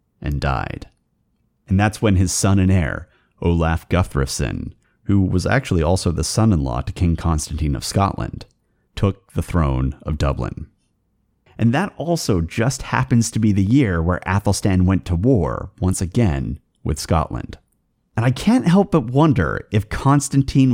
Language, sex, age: English, male, 30-49